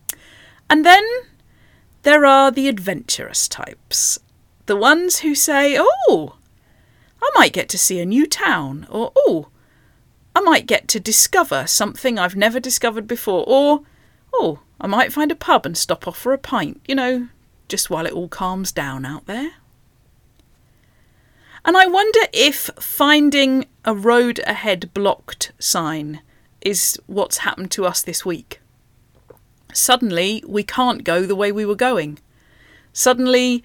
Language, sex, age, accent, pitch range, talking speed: English, female, 40-59, British, 185-270 Hz, 145 wpm